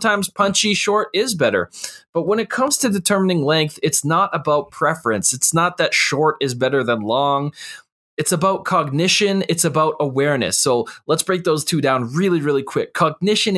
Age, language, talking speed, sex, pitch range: 20-39, English, 175 wpm, male, 135-180 Hz